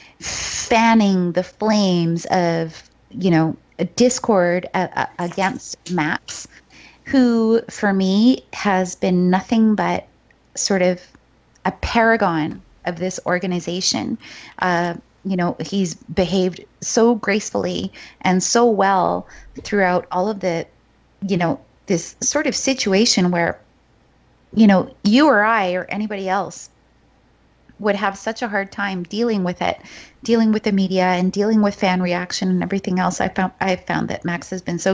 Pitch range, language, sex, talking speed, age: 185-225 Hz, English, female, 140 wpm, 30-49